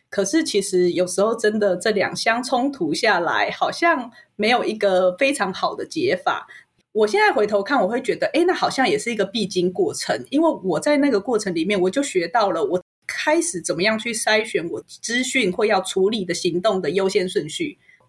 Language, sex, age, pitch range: Chinese, female, 20-39, 195-305 Hz